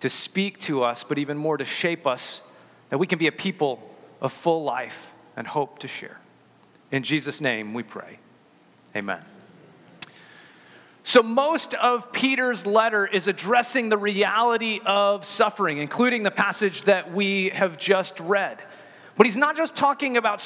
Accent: American